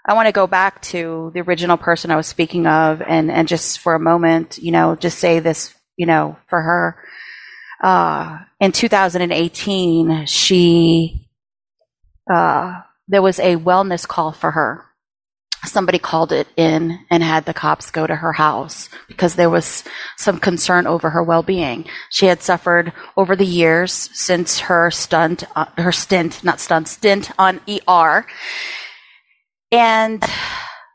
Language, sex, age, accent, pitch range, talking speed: English, female, 30-49, American, 165-185 Hz, 155 wpm